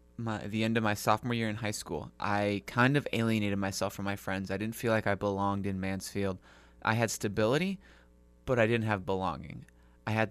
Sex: male